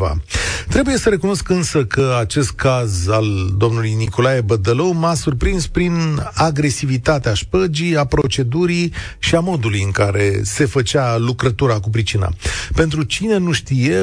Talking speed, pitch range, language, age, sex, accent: 135 wpm, 115-165 Hz, Romanian, 40-59, male, native